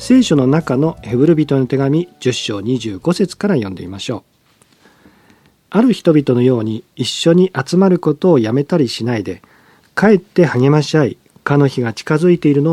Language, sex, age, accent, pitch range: Japanese, male, 40-59, native, 115-165 Hz